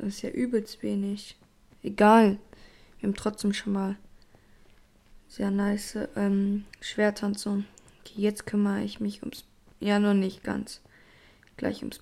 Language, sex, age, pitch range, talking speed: German, female, 20-39, 200-220 Hz, 140 wpm